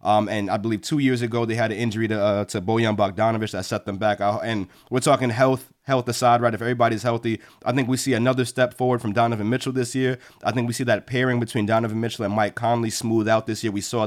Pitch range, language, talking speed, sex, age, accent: 110-130 Hz, English, 260 wpm, male, 30-49, American